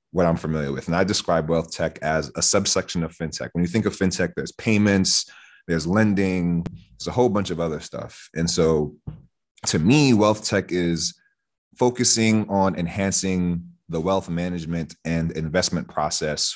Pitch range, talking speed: 80-100 Hz, 165 wpm